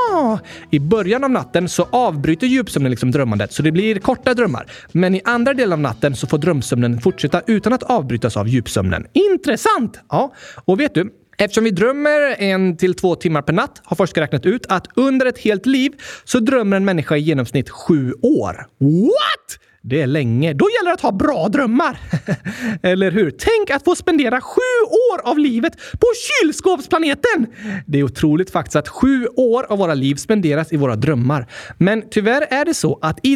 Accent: native